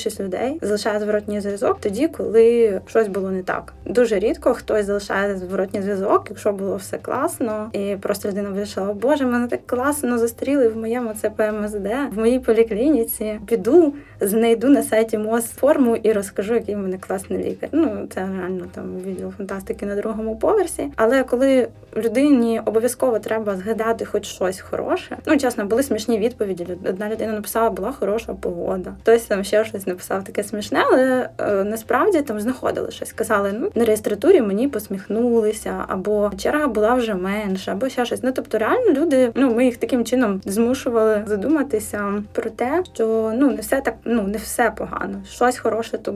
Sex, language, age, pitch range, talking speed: female, Ukrainian, 20-39, 205-245 Hz, 170 wpm